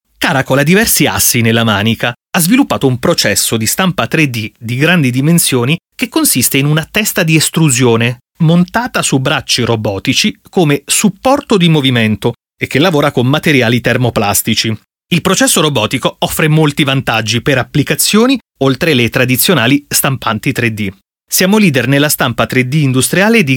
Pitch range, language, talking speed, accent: 125-175 Hz, Italian, 145 wpm, native